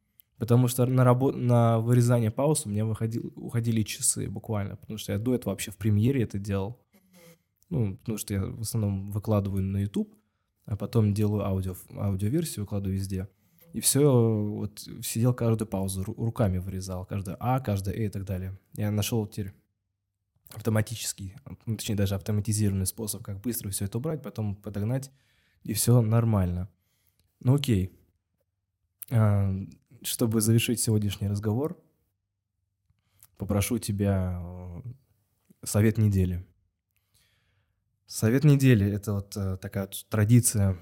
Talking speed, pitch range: 125 wpm, 100-120 Hz